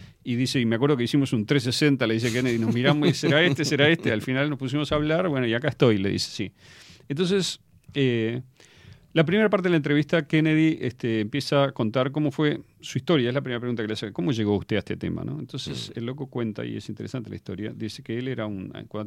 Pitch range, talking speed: 110-145 Hz, 240 wpm